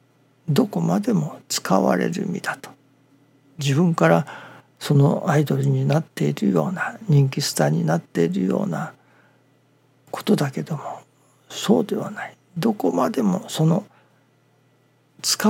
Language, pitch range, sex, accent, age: Japanese, 130-170 Hz, male, native, 60-79